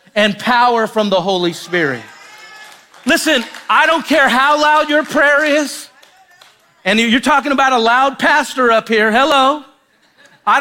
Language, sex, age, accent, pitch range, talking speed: English, male, 40-59, American, 245-290 Hz, 145 wpm